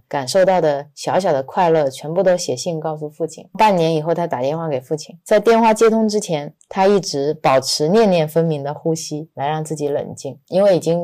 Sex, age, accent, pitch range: female, 20-39, native, 155-180 Hz